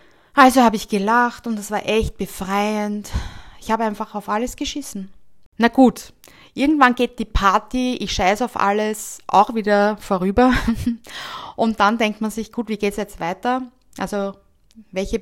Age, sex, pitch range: 20-39, female, 190-220 Hz